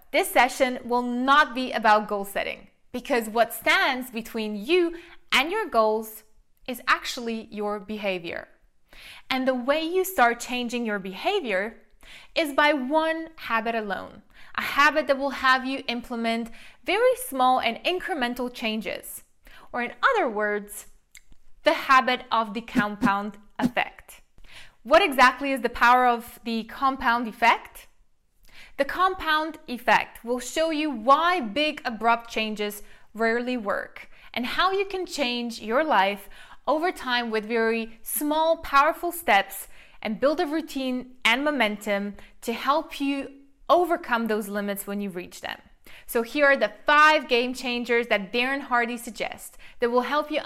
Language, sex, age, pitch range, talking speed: English, female, 20-39, 225-295 Hz, 145 wpm